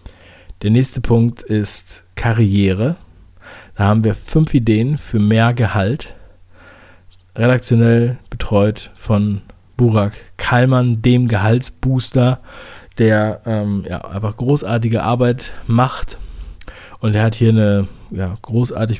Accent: German